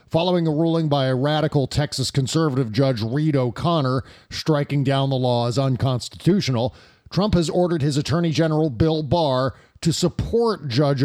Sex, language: male, English